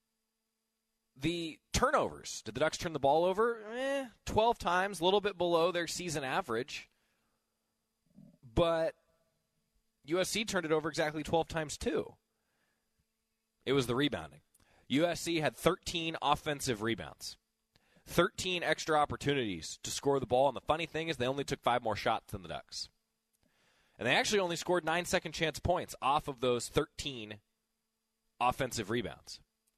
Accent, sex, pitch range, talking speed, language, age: American, male, 140-180 Hz, 145 wpm, English, 20-39